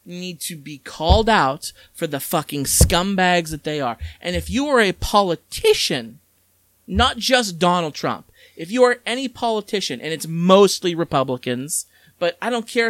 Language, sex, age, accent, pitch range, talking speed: English, male, 40-59, American, 135-200 Hz, 165 wpm